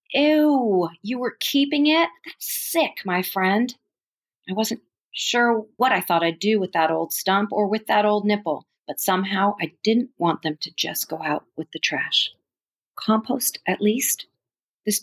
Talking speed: 170 wpm